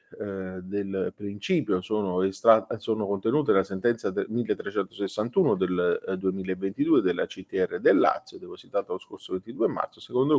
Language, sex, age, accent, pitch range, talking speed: Italian, male, 30-49, native, 100-135 Hz, 120 wpm